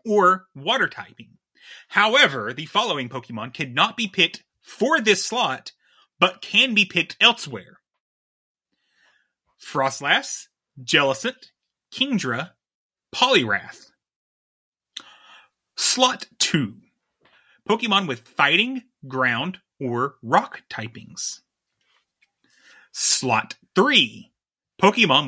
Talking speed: 80 wpm